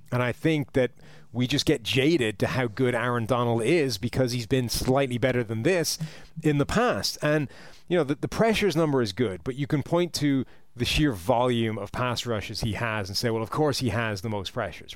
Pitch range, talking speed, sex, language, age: 110-140 Hz, 225 wpm, male, English, 30-49